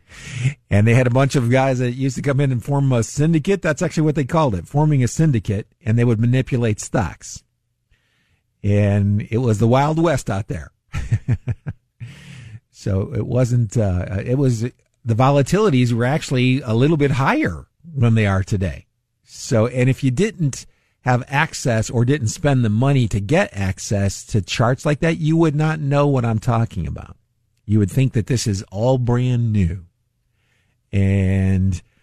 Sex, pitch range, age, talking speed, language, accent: male, 105-130 Hz, 50-69, 175 wpm, English, American